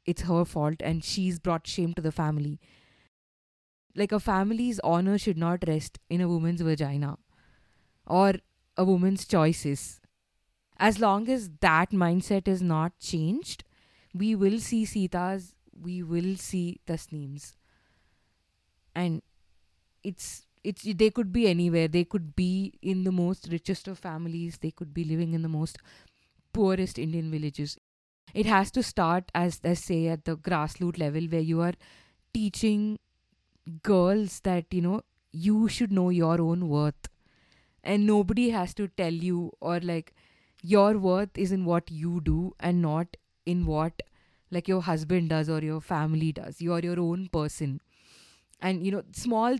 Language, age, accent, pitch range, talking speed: English, 20-39, Indian, 165-195 Hz, 155 wpm